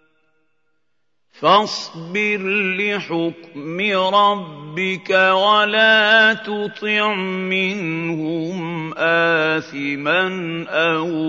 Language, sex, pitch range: Arabic, male, 155-200 Hz